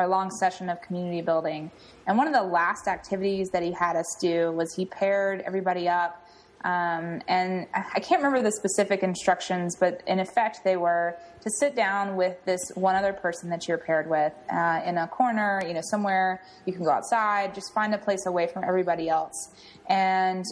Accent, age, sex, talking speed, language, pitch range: American, 20-39, female, 195 wpm, English, 175-200 Hz